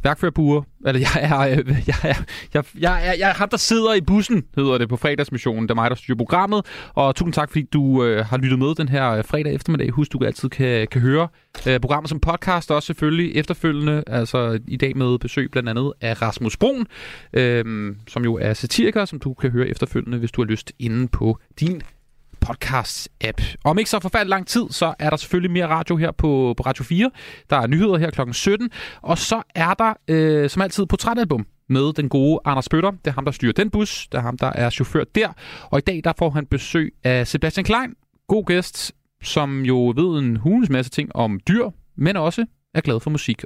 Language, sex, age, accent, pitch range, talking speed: Danish, male, 30-49, native, 125-170 Hz, 210 wpm